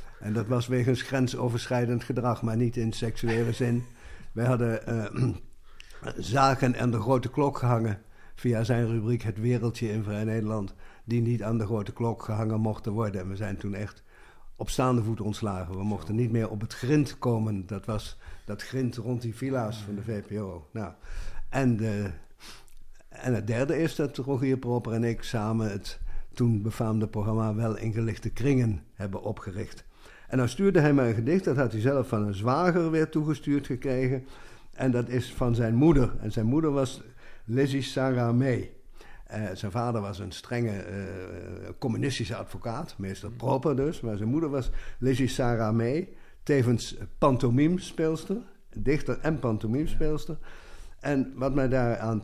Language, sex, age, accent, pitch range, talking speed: Dutch, male, 60-79, Dutch, 110-135 Hz, 170 wpm